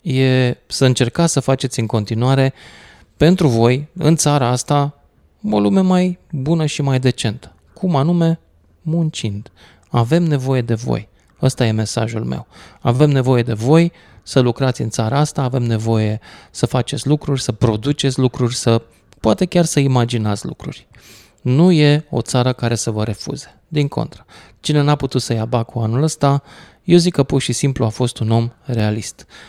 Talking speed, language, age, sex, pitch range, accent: 165 wpm, Romanian, 20-39, male, 110-140 Hz, native